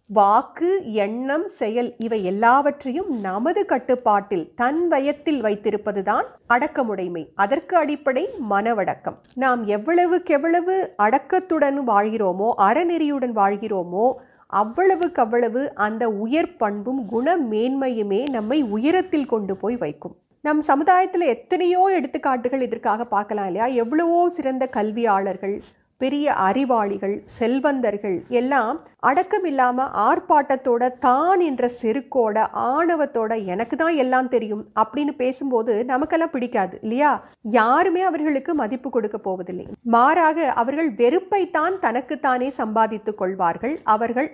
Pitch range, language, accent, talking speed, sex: 220-315 Hz, Tamil, native, 90 wpm, female